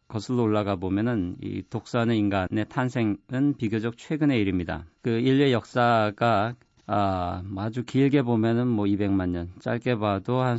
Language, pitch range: Korean, 95-120 Hz